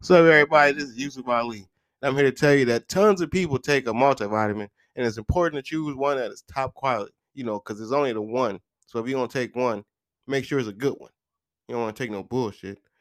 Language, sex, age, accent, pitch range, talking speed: English, male, 20-39, American, 120-145 Hz, 255 wpm